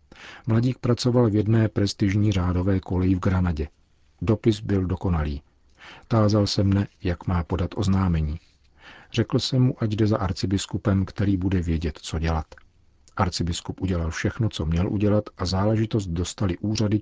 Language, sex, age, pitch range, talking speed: Czech, male, 50-69, 85-110 Hz, 145 wpm